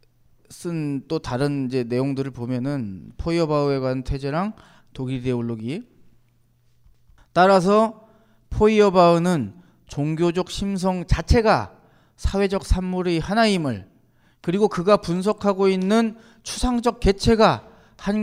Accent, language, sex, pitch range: native, Korean, male, 120-205 Hz